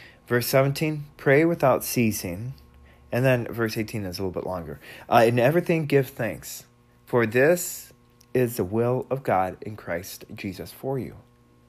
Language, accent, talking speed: English, American, 160 wpm